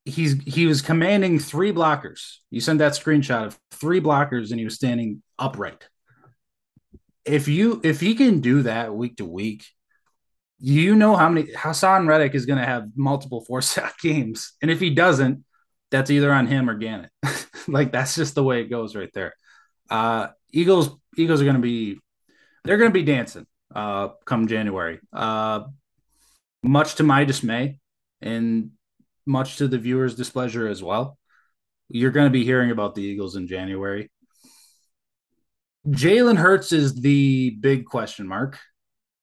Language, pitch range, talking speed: English, 115-155 Hz, 160 wpm